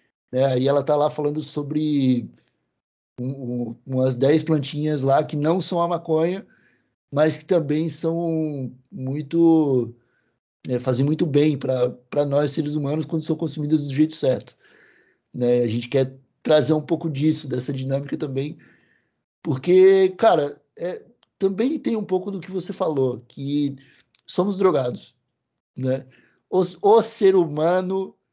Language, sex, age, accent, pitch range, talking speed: Portuguese, male, 60-79, Brazilian, 135-175 Hz, 140 wpm